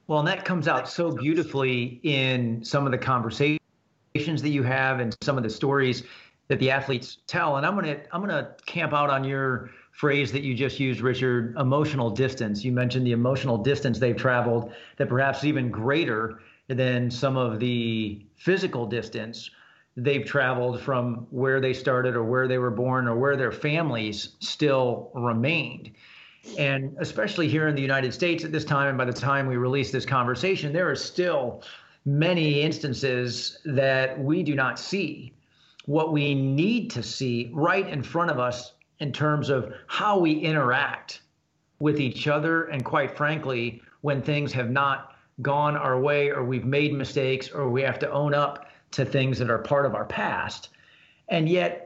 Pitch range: 125-150 Hz